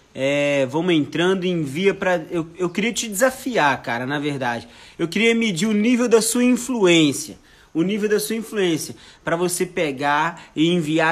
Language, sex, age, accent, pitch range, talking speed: Portuguese, male, 20-39, Brazilian, 145-180 Hz, 175 wpm